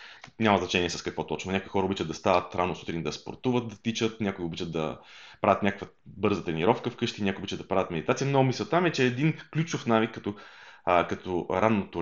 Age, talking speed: 30-49, 205 wpm